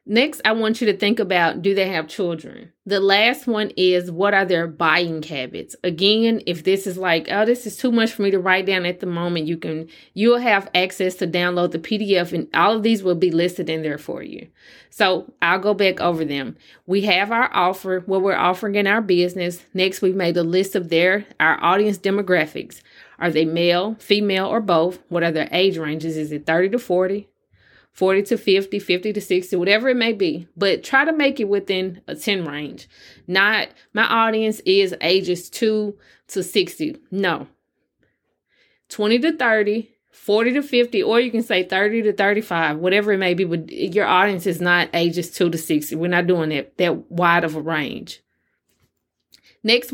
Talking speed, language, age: 200 wpm, English, 30-49